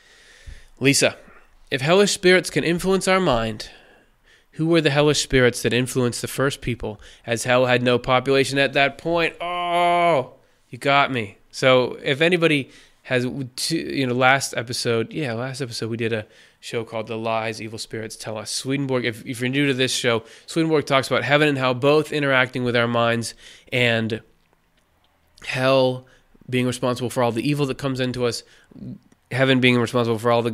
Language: English